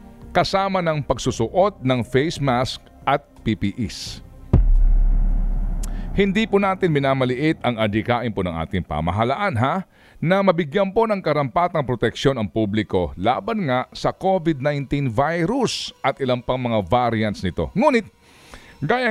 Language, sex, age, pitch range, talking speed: Filipino, male, 40-59, 115-190 Hz, 125 wpm